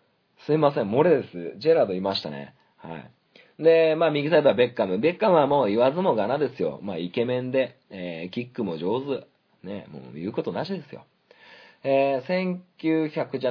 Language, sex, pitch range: Japanese, male, 125-215 Hz